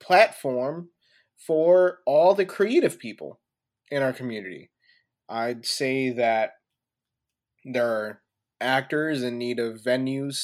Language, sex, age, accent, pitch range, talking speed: English, male, 20-39, American, 120-170 Hz, 110 wpm